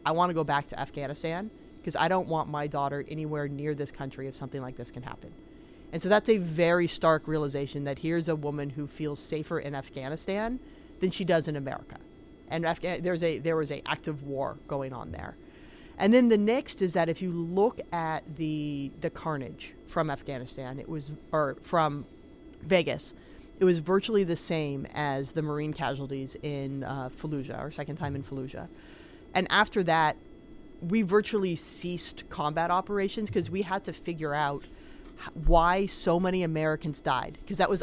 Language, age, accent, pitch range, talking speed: English, 30-49, American, 145-195 Hz, 180 wpm